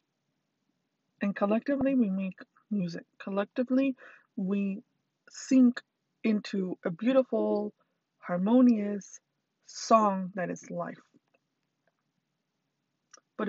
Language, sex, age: English, female, 20-39